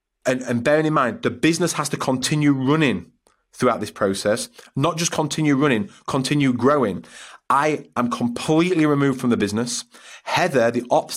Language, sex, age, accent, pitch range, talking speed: English, male, 30-49, British, 120-150 Hz, 160 wpm